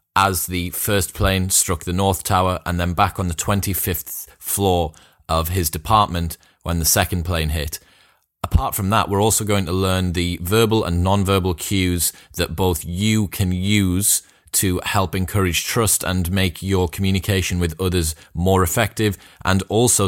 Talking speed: 165 wpm